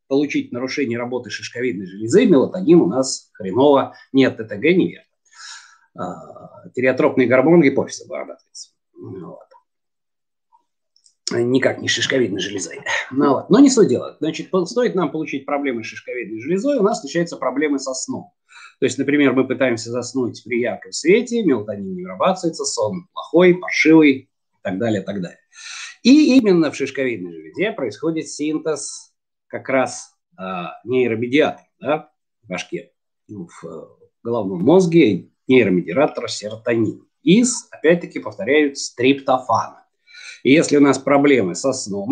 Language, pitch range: Russian, 130-190 Hz